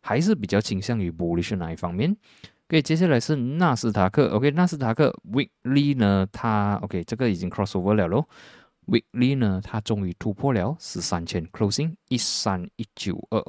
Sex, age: male, 20-39